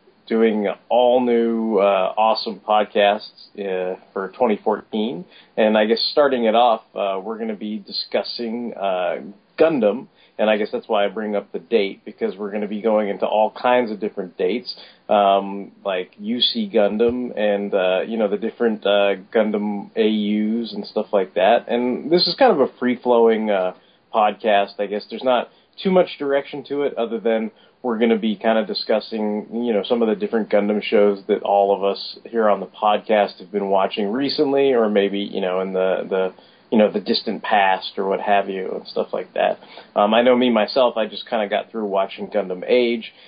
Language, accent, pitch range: English, American, 100-115 Hz